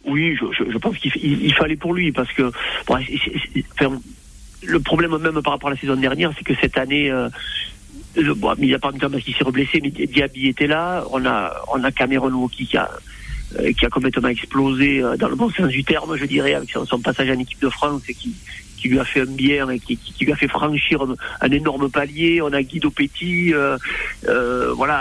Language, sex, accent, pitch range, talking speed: French, male, French, 135-155 Hz, 240 wpm